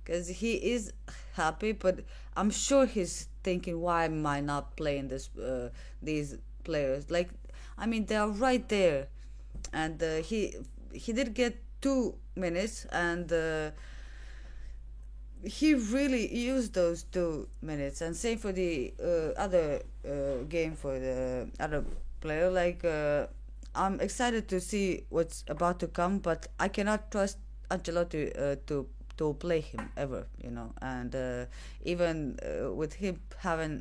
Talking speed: 145 wpm